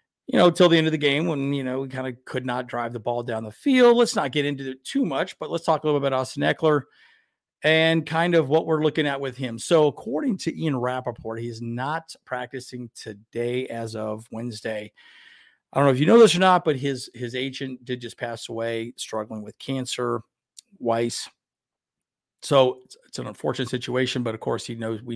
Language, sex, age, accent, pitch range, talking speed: English, male, 40-59, American, 120-145 Hz, 220 wpm